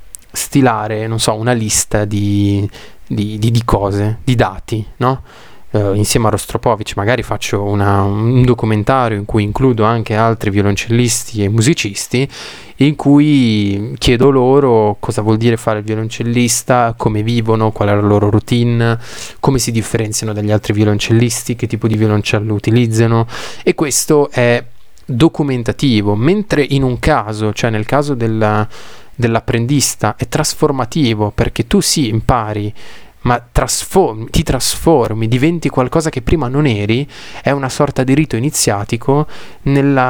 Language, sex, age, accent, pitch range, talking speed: Italian, male, 20-39, native, 110-135 Hz, 140 wpm